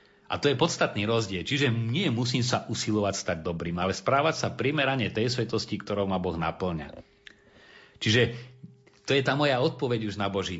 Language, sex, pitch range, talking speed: Slovak, male, 95-115 Hz, 175 wpm